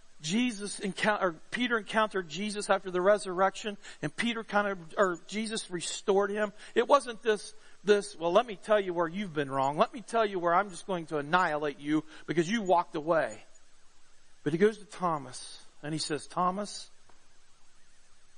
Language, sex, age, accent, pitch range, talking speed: English, male, 40-59, American, 165-210 Hz, 175 wpm